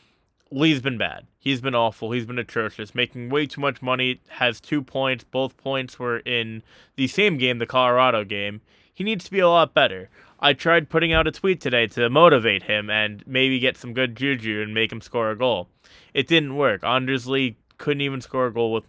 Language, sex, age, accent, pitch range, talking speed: English, male, 20-39, American, 110-140 Hz, 215 wpm